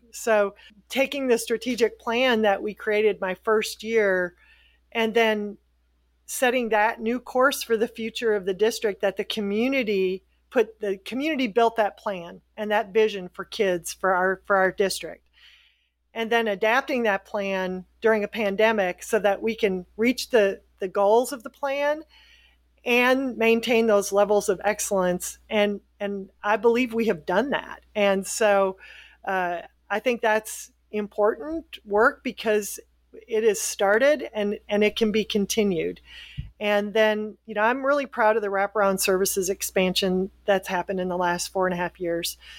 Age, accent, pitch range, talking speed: 40-59, American, 195-230 Hz, 160 wpm